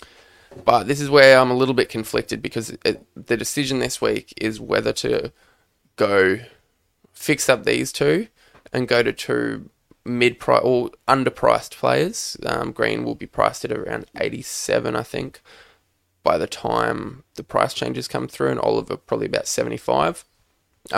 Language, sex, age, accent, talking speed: English, male, 20-39, Australian, 155 wpm